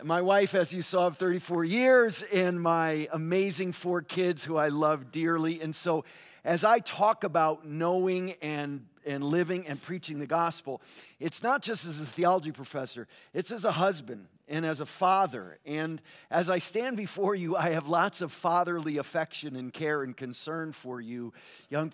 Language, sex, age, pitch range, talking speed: English, male, 50-69, 140-185 Hz, 180 wpm